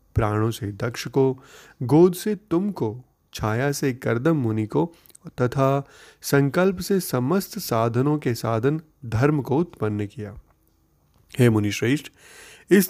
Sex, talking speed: male, 125 wpm